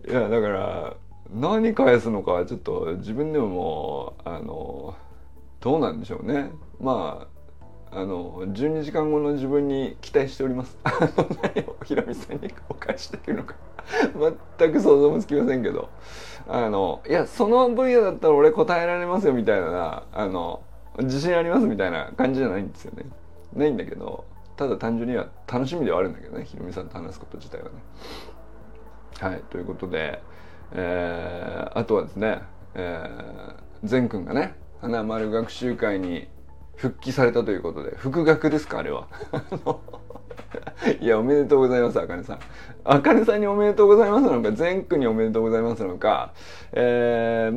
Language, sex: Japanese, male